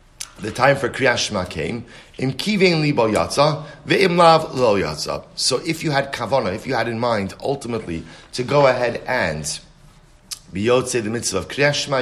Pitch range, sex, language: 115-145 Hz, male, English